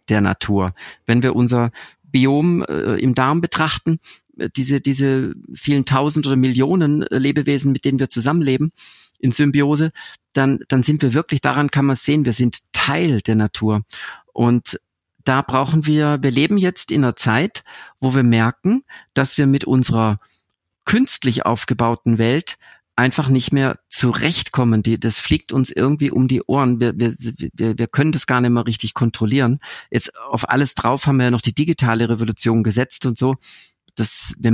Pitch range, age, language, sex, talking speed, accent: 115-145 Hz, 50-69, German, male, 160 wpm, German